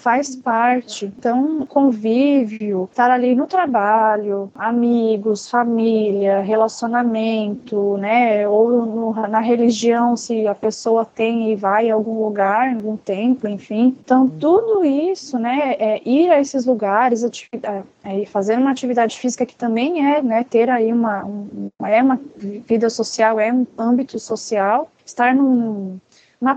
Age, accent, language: 20-39, Brazilian, Portuguese